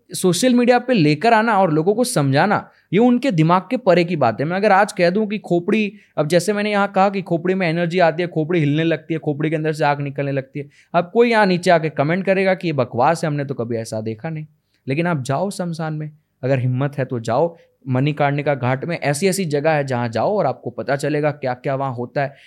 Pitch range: 145-200 Hz